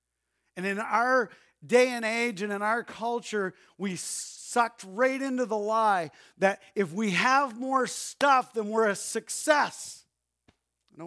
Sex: male